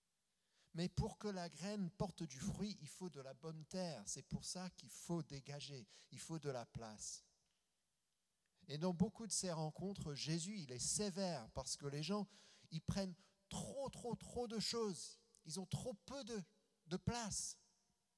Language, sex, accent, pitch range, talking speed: French, male, French, 130-190 Hz, 175 wpm